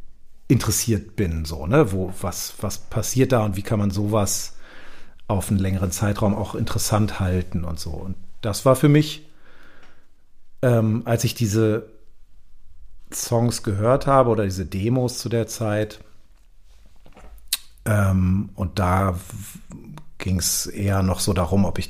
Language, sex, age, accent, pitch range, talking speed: German, male, 40-59, German, 95-110 Hz, 145 wpm